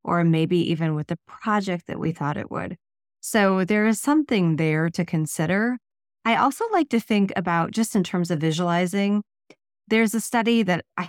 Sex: female